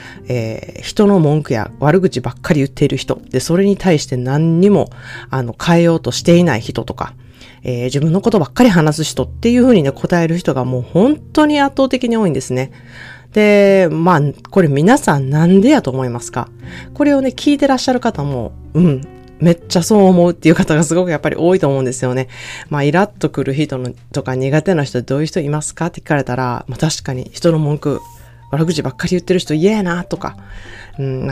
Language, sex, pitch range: Japanese, female, 130-185 Hz